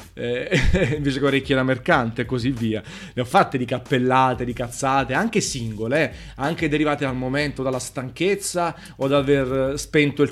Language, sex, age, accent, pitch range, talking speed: Italian, male, 30-49, native, 120-145 Hz, 175 wpm